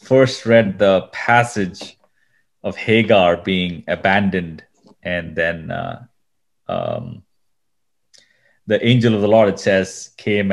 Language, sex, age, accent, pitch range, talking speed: English, male, 30-49, Indian, 90-110 Hz, 115 wpm